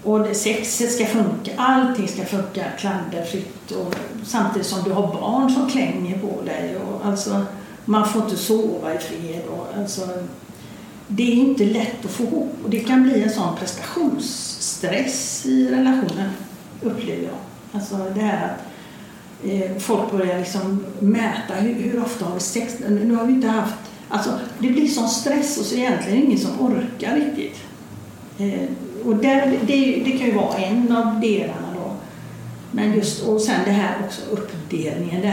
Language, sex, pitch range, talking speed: Swedish, female, 190-230 Hz, 155 wpm